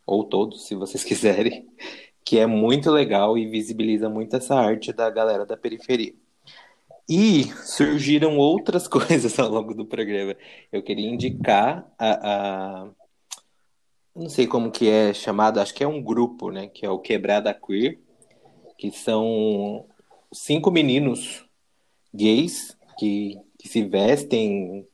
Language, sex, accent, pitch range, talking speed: Portuguese, male, Brazilian, 100-120 Hz, 135 wpm